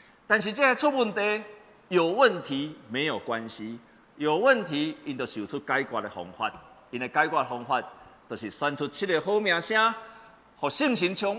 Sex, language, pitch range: male, Chinese, 150-245 Hz